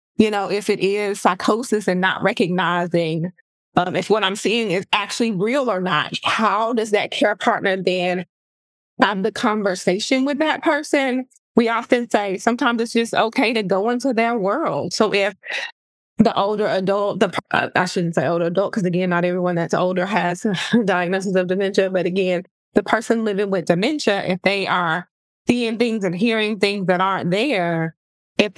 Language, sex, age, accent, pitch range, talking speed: English, female, 20-39, American, 185-235 Hz, 175 wpm